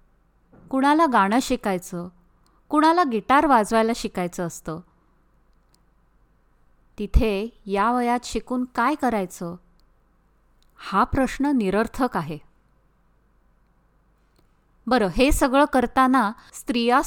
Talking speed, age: 80 wpm, 20-39